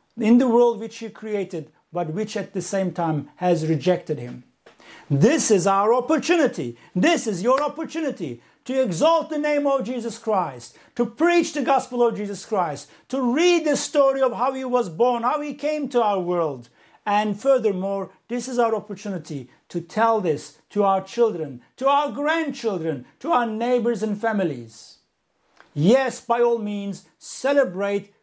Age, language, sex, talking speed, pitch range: 50-69, English, male, 165 wpm, 185-265 Hz